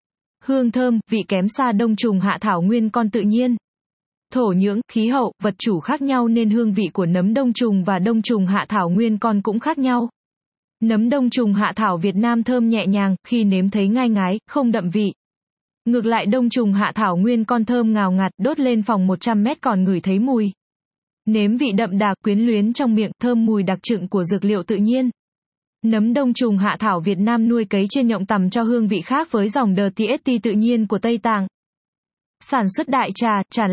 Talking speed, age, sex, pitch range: 215 wpm, 20-39, female, 200-240 Hz